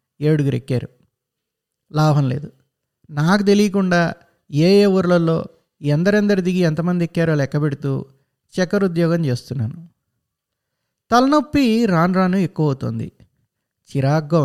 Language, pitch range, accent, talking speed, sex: Telugu, 140-190 Hz, native, 95 wpm, male